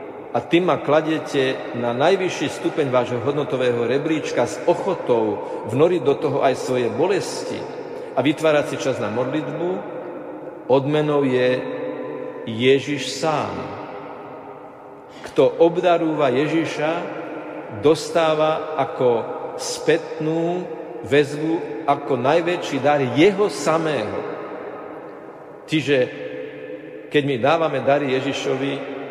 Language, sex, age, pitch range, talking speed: Slovak, male, 50-69, 125-170 Hz, 95 wpm